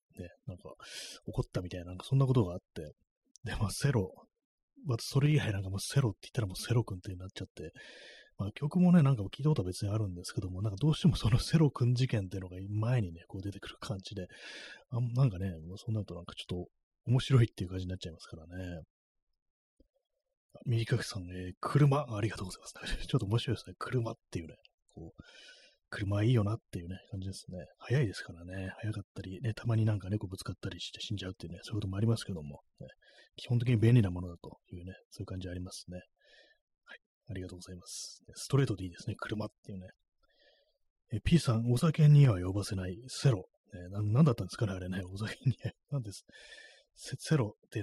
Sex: male